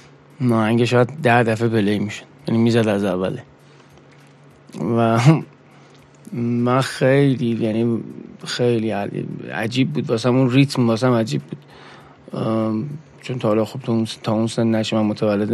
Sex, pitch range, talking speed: male, 110-130 Hz, 125 wpm